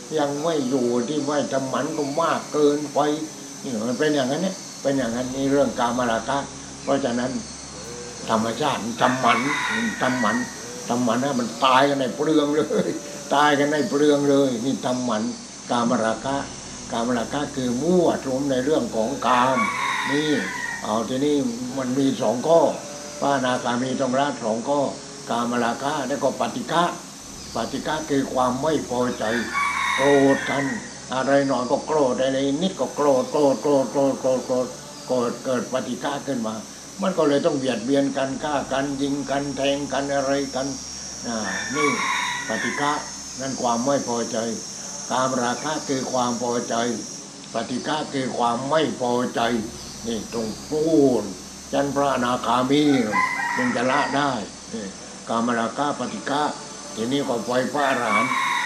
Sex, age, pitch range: male, 60-79, 125-145 Hz